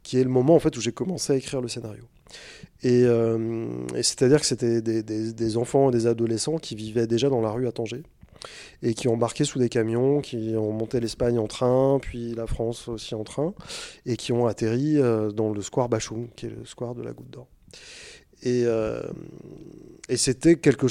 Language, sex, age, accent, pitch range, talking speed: French, male, 30-49, French, 115-135 Hz, 215 wpm